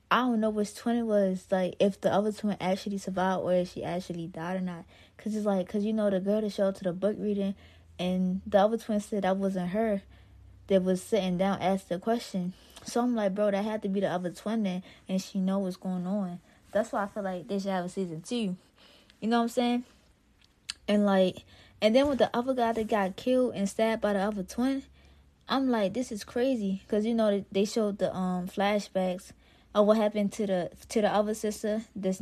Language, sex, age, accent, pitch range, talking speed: English, female, 20-39, American, 180-215 Hz, 235 wpm